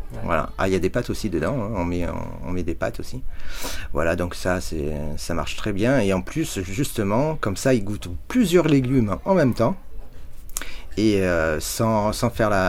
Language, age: French, 30-49